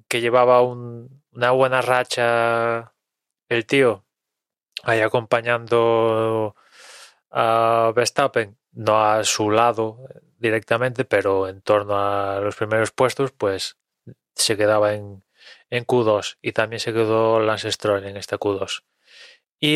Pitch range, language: 110-150 Hz, Spanish